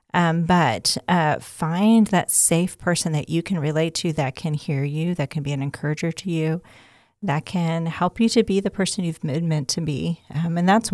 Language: English